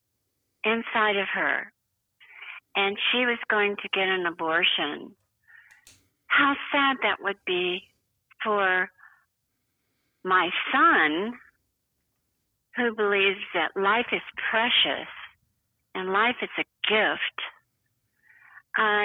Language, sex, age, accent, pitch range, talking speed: English, female, 50-69, American, 190-245 Hz, 100 wpm